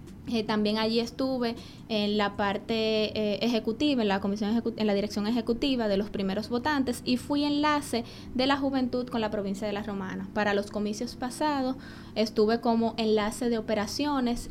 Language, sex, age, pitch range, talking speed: Spanish, female, 20-39, 210-260 Hz, 175 wpm